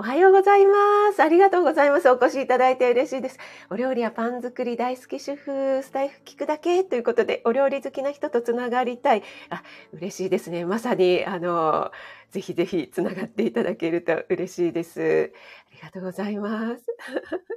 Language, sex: Japanese, female